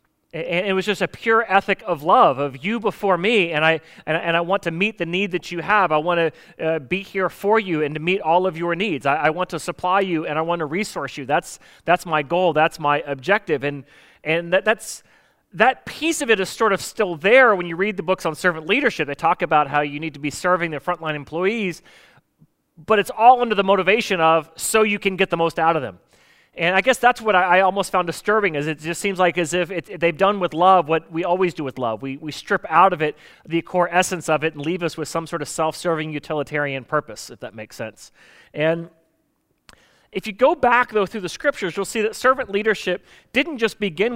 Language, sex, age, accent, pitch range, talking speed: English, male, 30-49, American, 160-200 Hz, 240 wpm